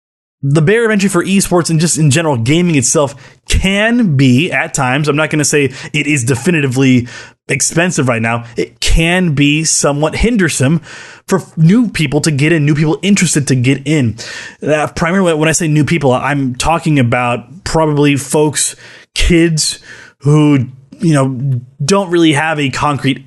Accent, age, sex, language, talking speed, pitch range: American, 20-39, male, English, 170 wpm, 135-180 Hz